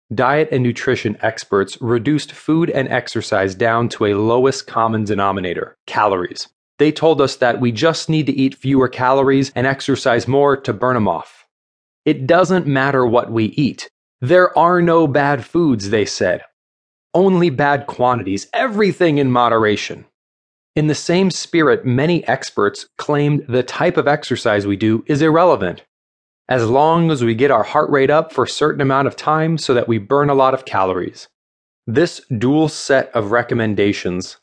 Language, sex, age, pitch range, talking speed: English, male, 30-49, 110-145 Hz, 165 wpm